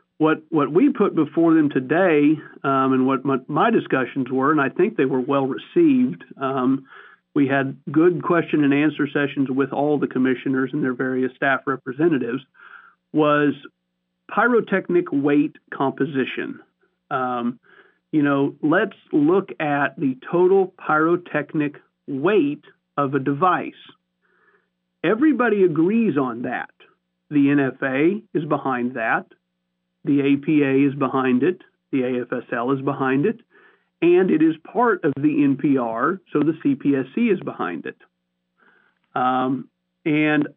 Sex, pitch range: male, 135-180 Hz